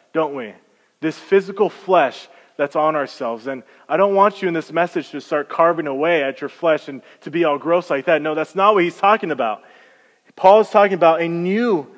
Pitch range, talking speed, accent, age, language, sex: 145-185 Hz, 215 wpm, American, 20-39, English, male